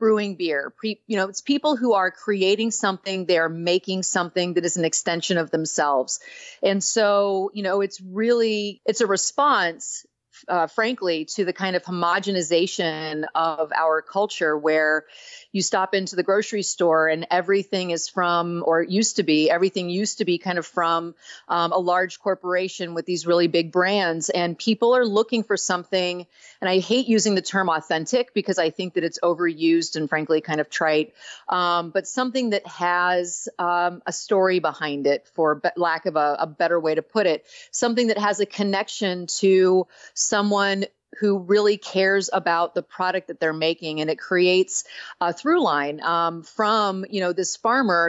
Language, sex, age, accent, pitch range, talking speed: English, female, 30-49, American, 170-205 Hz, 180 wpm